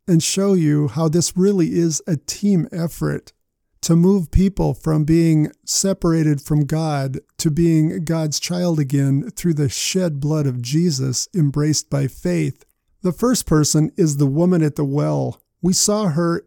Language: English